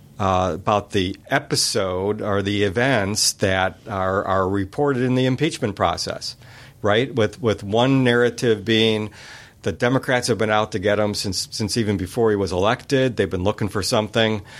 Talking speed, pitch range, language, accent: 170 wpm, 100-115 Hz, English, American